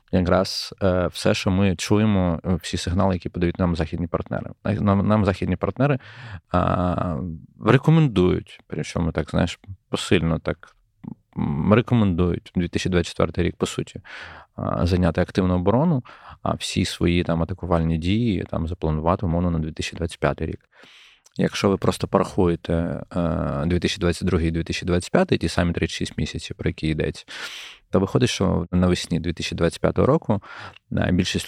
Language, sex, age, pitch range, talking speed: Ukrainian, male, 20-39, 85-100 Hz, 115 wpm